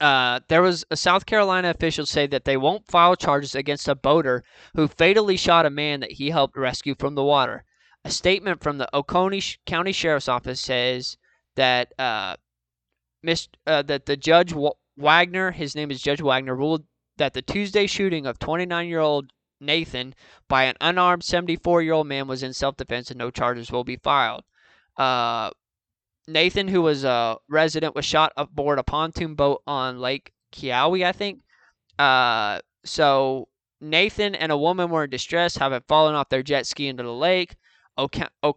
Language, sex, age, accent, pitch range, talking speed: English, male, 20-39, American, 130-165 Hz, 175 wpm